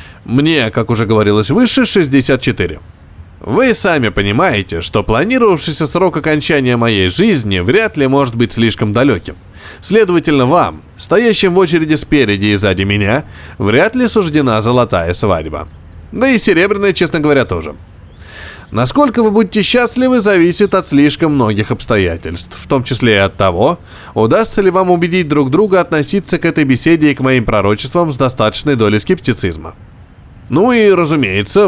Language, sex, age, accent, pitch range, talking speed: Russian, male, 20-39, native, 100-170 Hz, 145 wpm